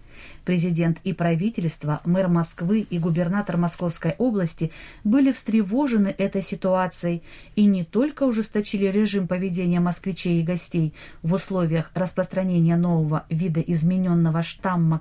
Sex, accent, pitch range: female, native, 170-225 Hz